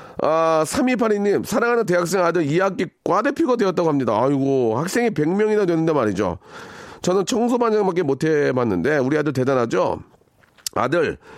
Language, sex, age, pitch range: Korean, male, 40-59, 125-195 Hz